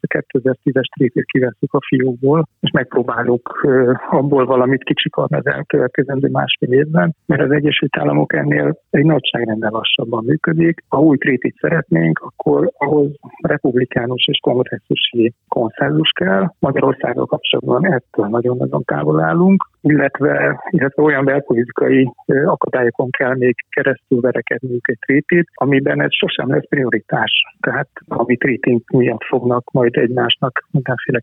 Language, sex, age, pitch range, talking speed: Hungarian, male, 60-79, 120-145 Hz, 125 wpm